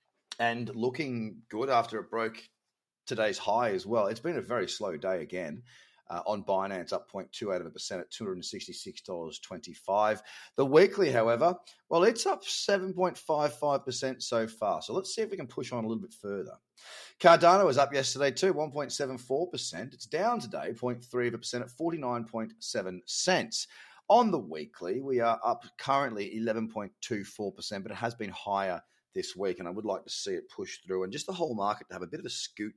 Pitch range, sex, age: 110-150 Hz, male, 30-49